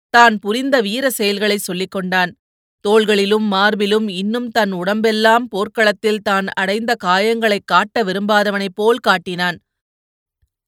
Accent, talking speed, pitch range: native, 105 wpm, 195-235 Hz